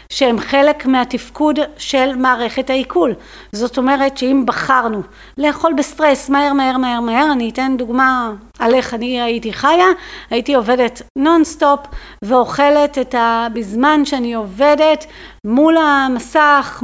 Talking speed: 125 wpm